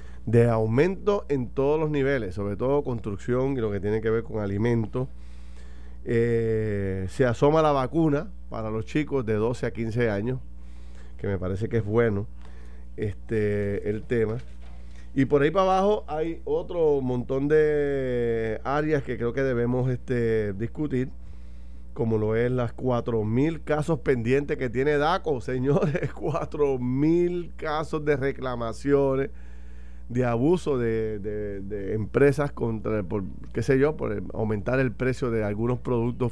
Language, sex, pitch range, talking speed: Spanish, male, 105-135 Hz, 145 wpm